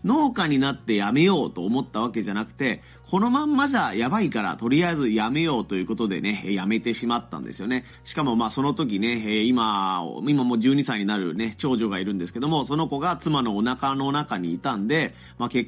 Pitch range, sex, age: 110-165 Hz, male, 30-49